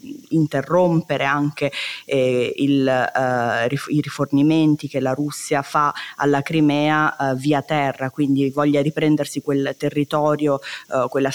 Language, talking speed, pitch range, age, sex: Italian, 120 wpm, 140-155 Hz, 20-39, female